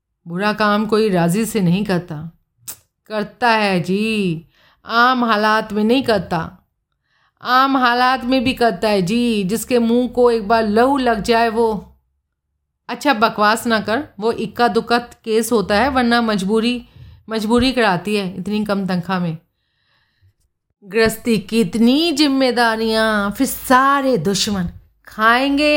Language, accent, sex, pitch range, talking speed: Hindi, native, female, 190-240 Hz, 135 wpm